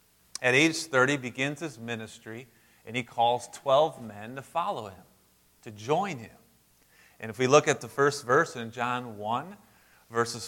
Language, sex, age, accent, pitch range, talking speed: English, male, 30-49, American, 115-175 Hz, 165 wpm